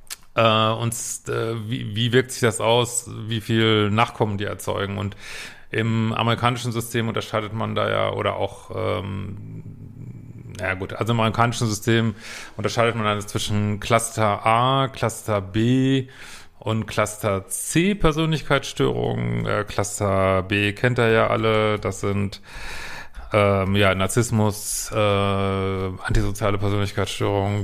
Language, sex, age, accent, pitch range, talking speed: German, male, 40-59, German, 100-115 Hz, 125 wpm